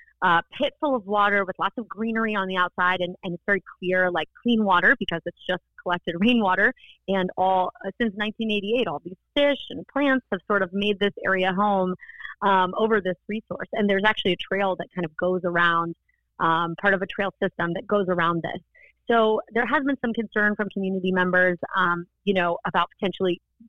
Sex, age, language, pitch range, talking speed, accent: female, 30-49, English, 180-215 Hz, 205 wpm, American